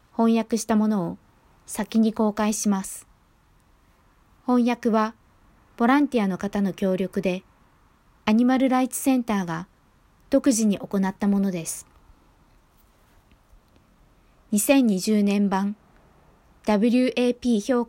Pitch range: 185-240 Hz